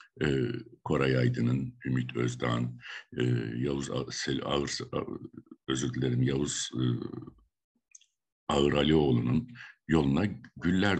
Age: 60-79